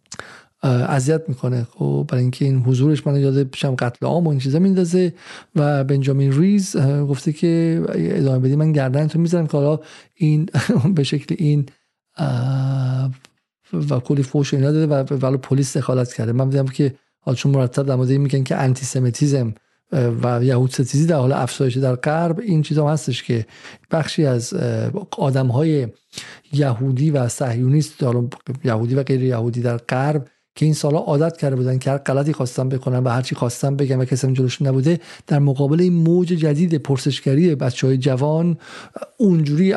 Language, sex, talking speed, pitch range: Persian, male, 155 wpm, 130-155 Hz